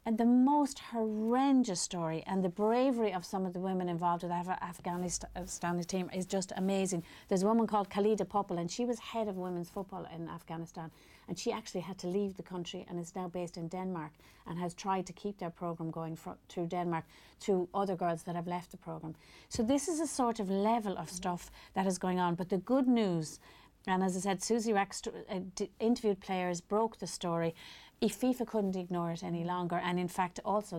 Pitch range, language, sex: 170-200 Hz, English, female